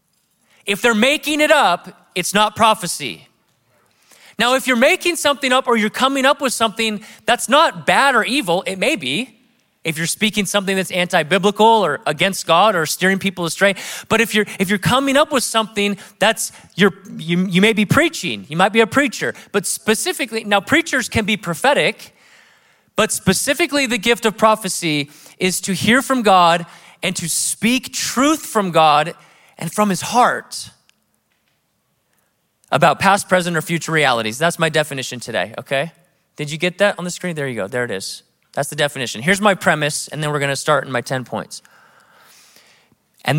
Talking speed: 180 wpm